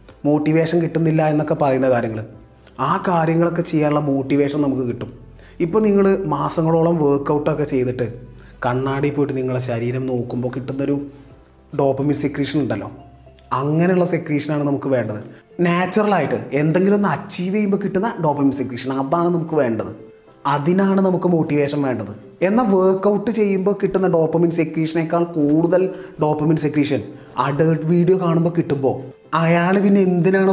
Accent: native